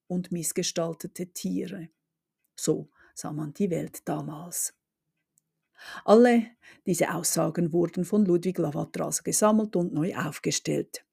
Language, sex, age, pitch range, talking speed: German, female, 50-69, 170-205 Hz, 115 wpm